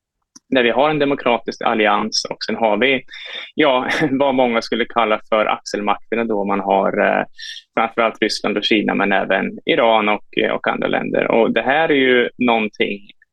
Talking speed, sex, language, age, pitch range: 165 wpm, male, Swedish, 20-39, 110-135 Hz